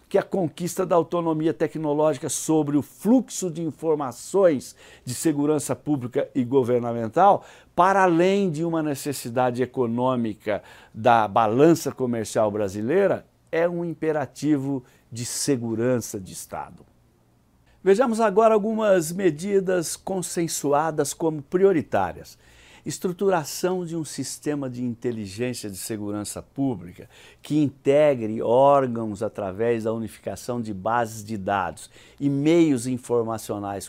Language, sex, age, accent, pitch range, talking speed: Portuguese, male, 60-79, Brazilian, 110-160 Hz, 110 wpm